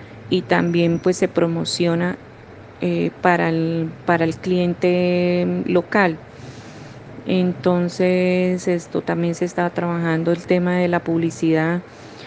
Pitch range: 170-185 Hz